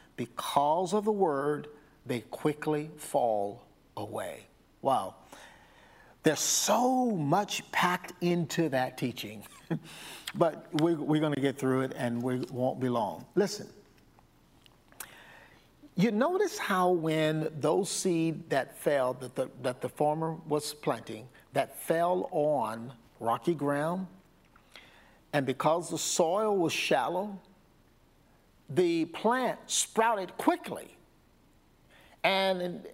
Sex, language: male, English